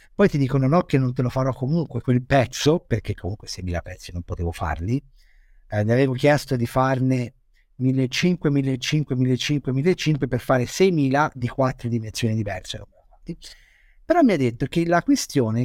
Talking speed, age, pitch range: 165 wpm, 50-69, 125-195 Hz